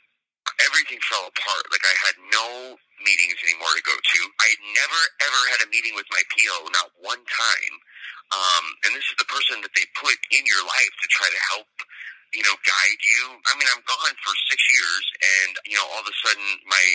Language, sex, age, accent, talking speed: English, male, 30-49, American, 210 wpm